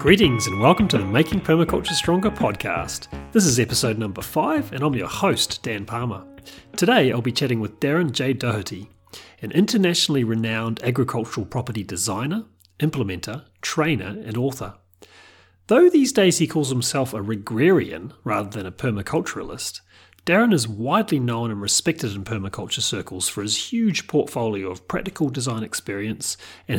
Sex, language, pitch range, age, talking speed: male, English, 100-140 Hz, 40-59, 150 wpm